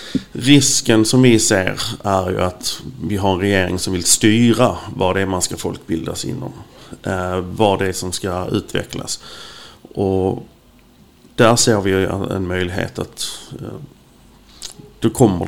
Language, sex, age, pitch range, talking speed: English, male, 30-49, 95-115 Hz, 140 wpm